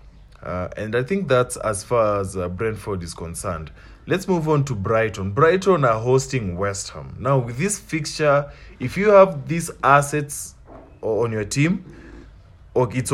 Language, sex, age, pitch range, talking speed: English, male, 20-39, 100-135 Hz, 160 wpm